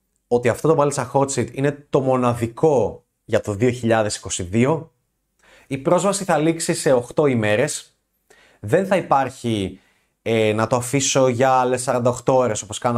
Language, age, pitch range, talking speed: Greek, 30-49, 115-170 Hz, 140 wpm